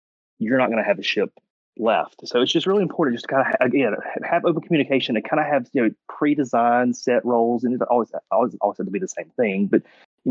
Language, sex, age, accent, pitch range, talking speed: English, male, 30-49, American, 100-125 Hz, 250 wpm